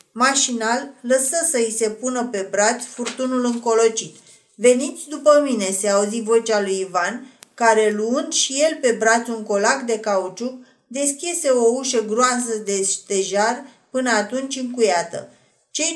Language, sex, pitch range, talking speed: Romanian, female, 220-260 Hz, 140 wpm